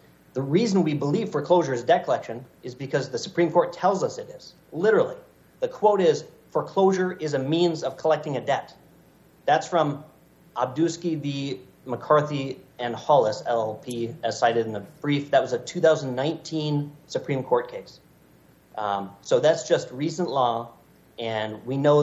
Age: 40-59